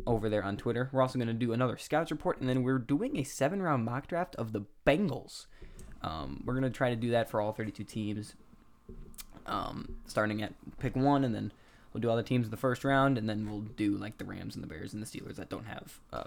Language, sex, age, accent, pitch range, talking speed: English, male, 10-29, American, 110-125 Hz, 250 wpm